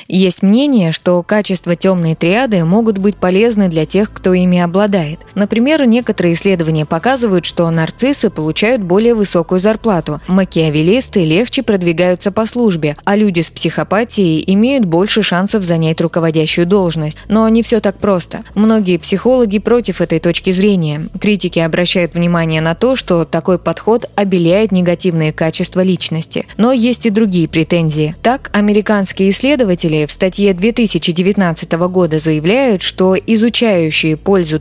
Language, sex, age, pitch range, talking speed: Russian, female, 20-39, 170-220 Hz, 135 wpm